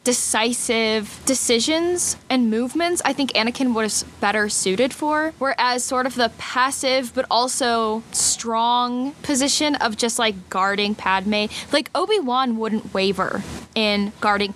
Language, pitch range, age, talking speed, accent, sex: English, 215-275 Hz, 10-29, 130 wpm, American, female